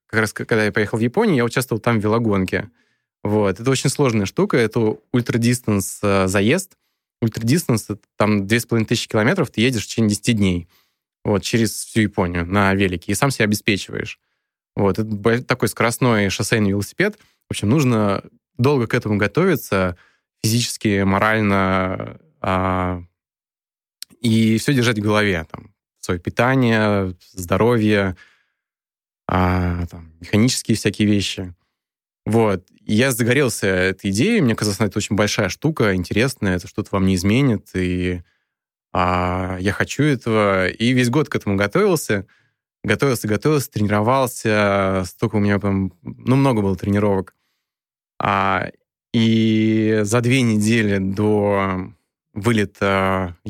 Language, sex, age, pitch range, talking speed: Russian, male, 20-39, 95-115 Hz, 130 wpm